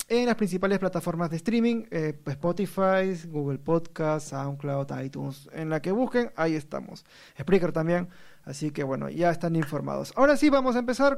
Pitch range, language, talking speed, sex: 165-220 Hz, Spanish, 165 wpm, male